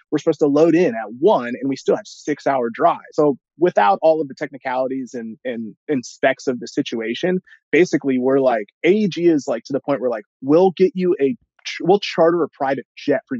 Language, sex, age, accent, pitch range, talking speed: English, male, 30-49, American, 135-190 Hz, 215 wpm